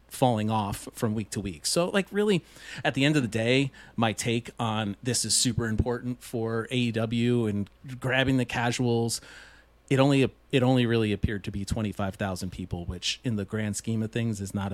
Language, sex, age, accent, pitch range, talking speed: English, male, 40-59, American, 105-130 Hz, 190 wpm